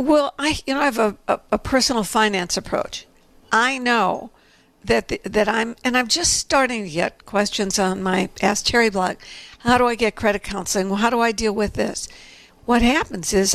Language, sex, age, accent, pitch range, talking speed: English, female, 60-79, American, 195-240 Hz, 205 wpm